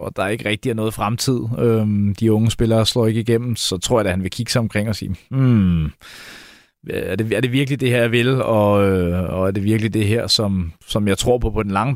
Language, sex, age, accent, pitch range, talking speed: Danish, male, 30-49, native, 105-125 Hz, 245 wpm